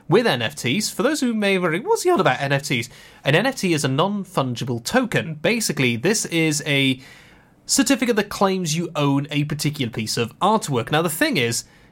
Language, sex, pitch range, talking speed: English, male, 135-175 Hz, 185 wpm